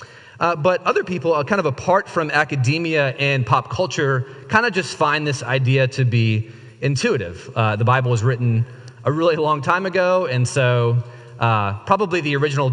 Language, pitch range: English, 120-145 Hz